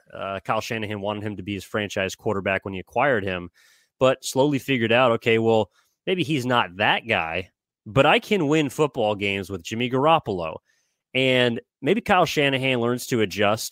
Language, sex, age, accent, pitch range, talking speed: English, male, 20-39, American, 105-150 Hz, 180 wpm